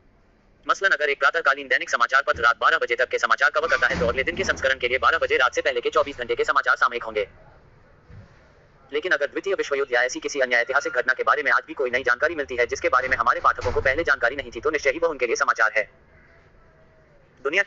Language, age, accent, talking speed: Hindi, 30-49, native, 250 wpm